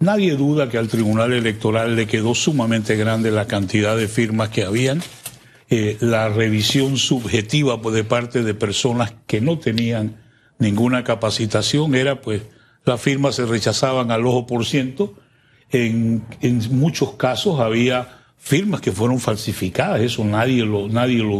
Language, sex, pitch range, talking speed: Spanish, male, 115-135 Hz, 145 wpm